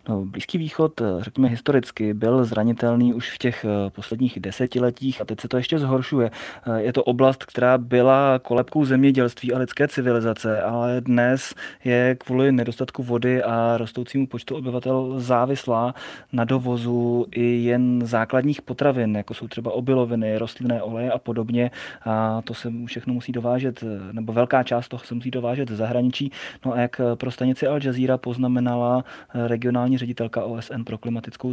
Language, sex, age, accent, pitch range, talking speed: Czech, male, 20-39, native, 115-130 Hz, 150 wpm